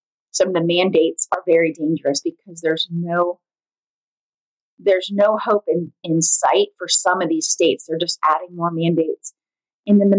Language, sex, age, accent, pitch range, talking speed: English, female, 30-49, American, 165-200 Hz, 170 wpm